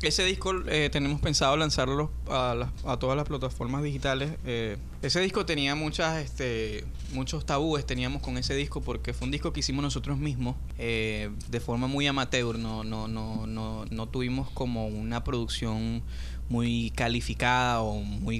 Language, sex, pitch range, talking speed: Spanish, male, 115-135 Hz, 165 wpm